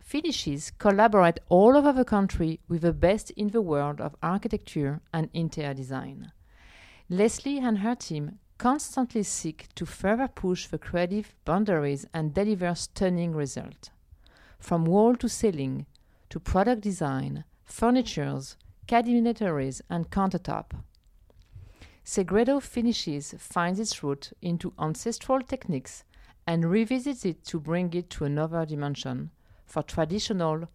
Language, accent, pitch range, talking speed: English, French, 135-200 Hz, 125 wpm